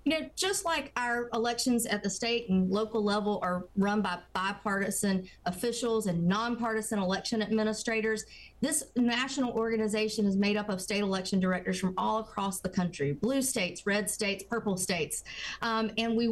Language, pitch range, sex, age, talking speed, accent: English, 200-240 Hz, female, 40-59, 165 wpm, American